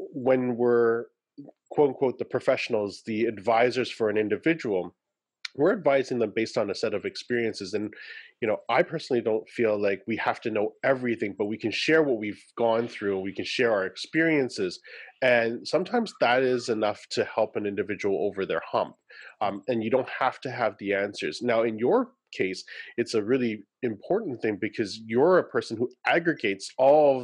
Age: 30-49